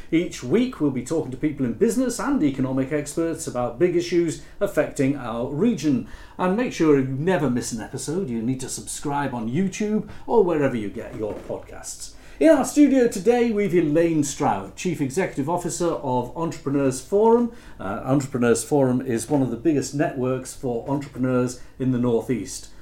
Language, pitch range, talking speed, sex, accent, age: English, 140-205 Hz, 170 wpm, male, British, 50-69